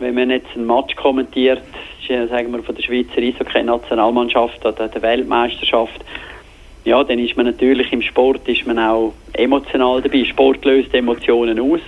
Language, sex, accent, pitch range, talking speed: German, male, Swiss, 120-135 Hz, 165 wpm